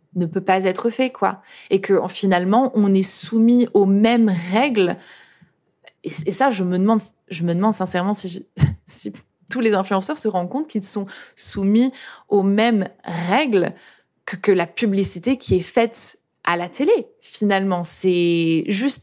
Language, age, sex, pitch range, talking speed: French, 20-39, female, 190-235 Hz, 175 wpm